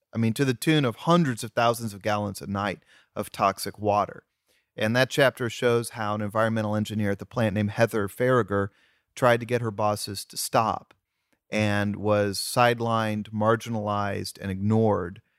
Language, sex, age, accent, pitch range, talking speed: English, male, 30-49, American, 105-130 Hz, 170 wpm